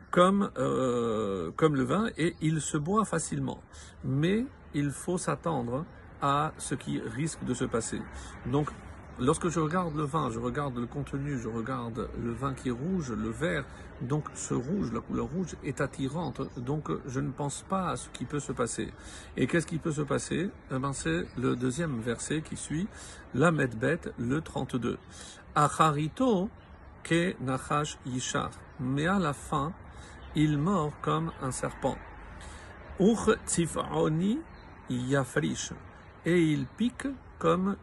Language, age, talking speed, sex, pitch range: French, 50-69, 155 wpm, male, 120-165 Hz